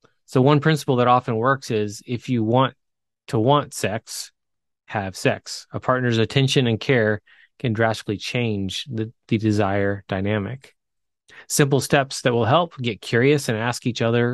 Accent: American